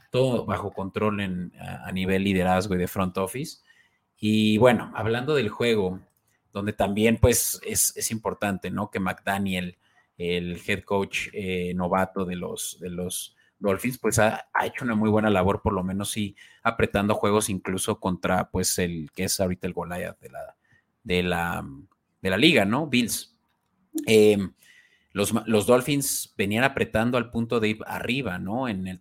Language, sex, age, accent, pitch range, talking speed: Spanish, male, 30-49, Mexican, 95-105 Hz, 175 wpm